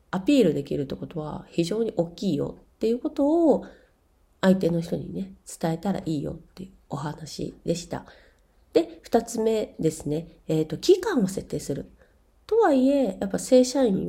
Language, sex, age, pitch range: Japanese, female, 40-59, 170-265 Hz